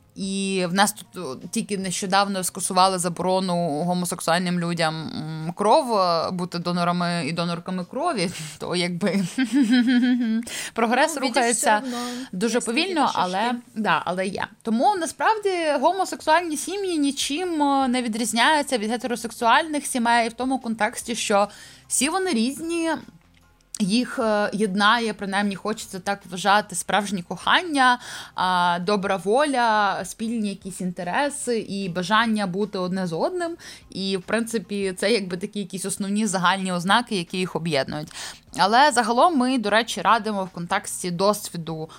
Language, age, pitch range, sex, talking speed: Ukrainian, 20-39, 180-240 Hz, female, 115 wpm